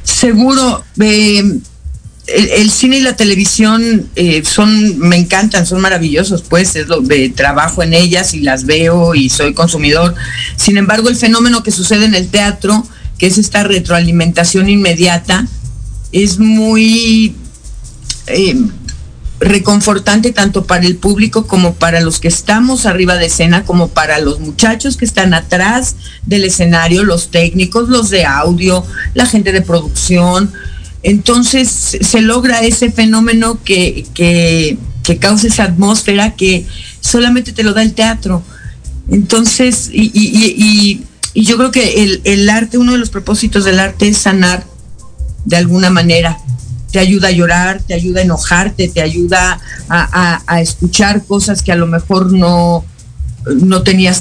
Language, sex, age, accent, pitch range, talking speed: Spanish, female, 50-69, Mexican, 170-215 Hz, 145 wpm